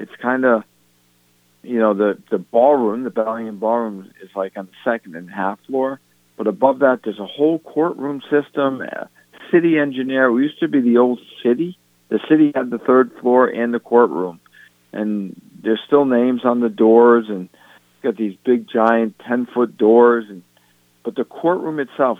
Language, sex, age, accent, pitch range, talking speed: English, male, 50-69, American, 95-125 Hz, 180 wpm